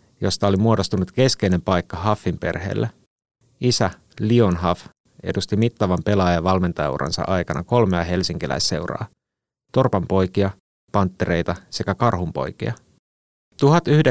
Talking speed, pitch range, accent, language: 85 wpm, 90-115 Hz, native, Finnish